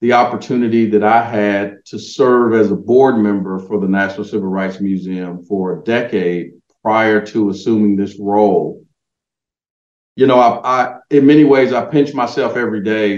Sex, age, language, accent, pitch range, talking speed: male, 50-69, English, American, 100-120 Hz, 170 wpm